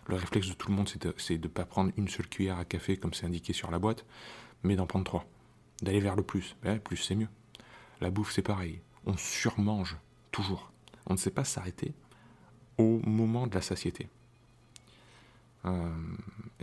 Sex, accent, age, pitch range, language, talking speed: male, French, 30-49, 95-120 Hz, French, 190 wpm